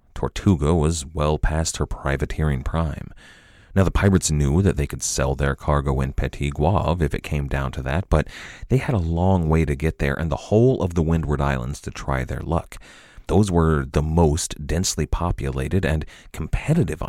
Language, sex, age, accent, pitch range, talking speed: English, male, 30-49, American, 75-95 Hz, 190 wpm